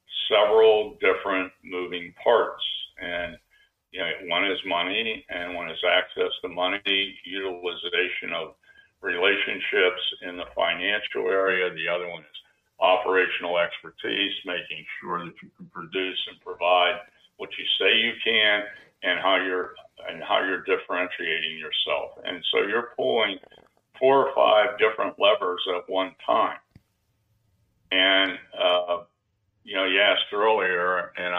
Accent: American